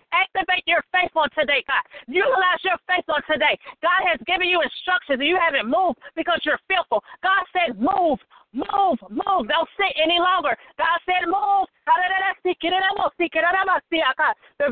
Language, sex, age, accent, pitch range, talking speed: English, female, 40-59, American, 320-375 Hz, 150 wpm